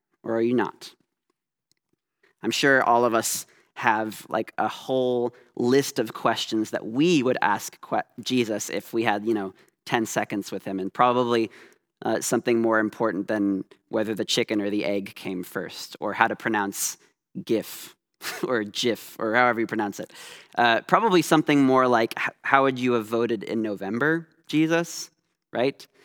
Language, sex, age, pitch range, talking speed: English, male, 20-39, 110-135 Hz, 165 wpm